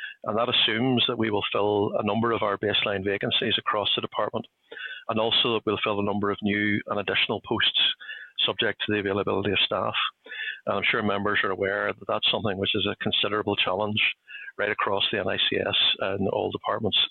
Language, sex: English, male